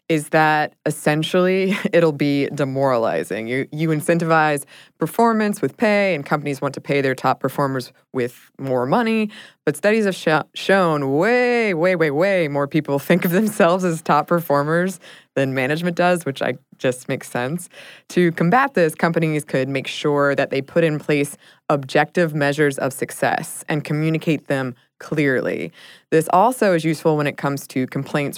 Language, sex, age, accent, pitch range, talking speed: English, female, 20-39, American, 140-170 Hz, 165 wpm